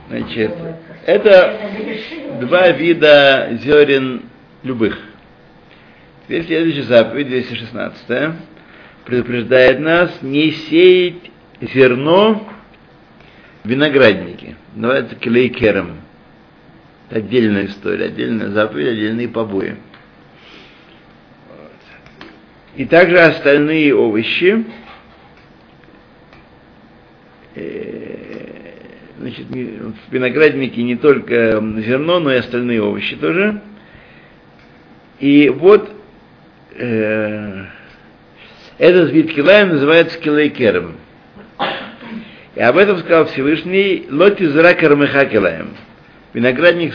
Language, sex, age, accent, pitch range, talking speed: Russian, male, 50-69, native, 125-175 Hz, 75 wpm